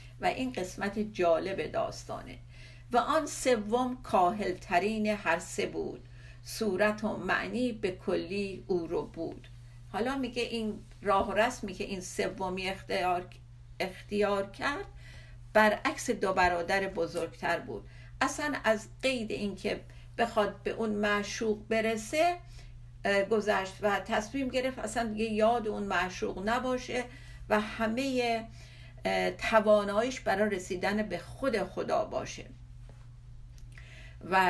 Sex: female